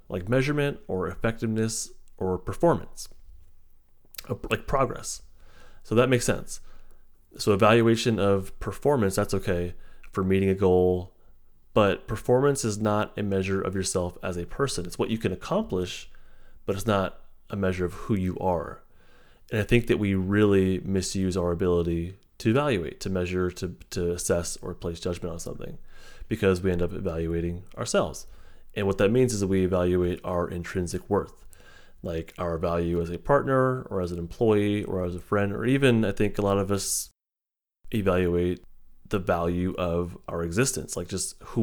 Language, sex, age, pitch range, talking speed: English, male, 30-49, 85-110 Hz, 165 wpm